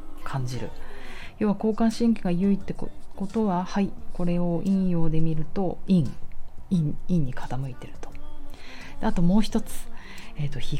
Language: Japanese